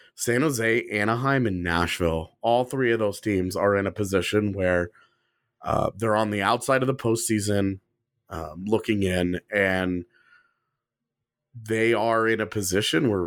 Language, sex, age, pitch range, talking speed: English, male, 30-49, 105-135 Hz, 150 wpm